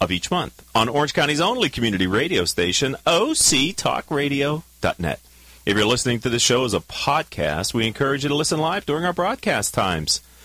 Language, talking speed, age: English, 170 wpm, 40-59